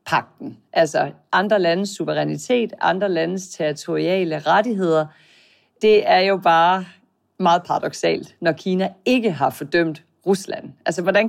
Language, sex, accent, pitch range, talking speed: Danish, female, native, 165-210 Hz, 120 wpm